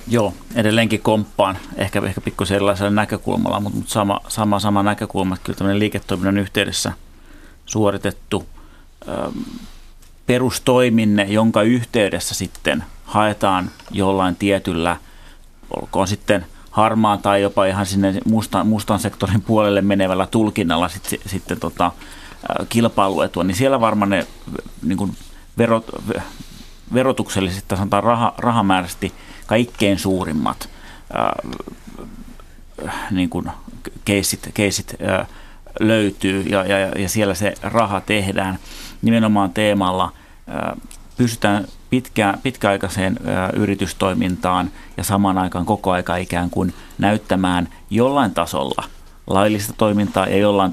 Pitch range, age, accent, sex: 95-105 Hz, 30-49, native, male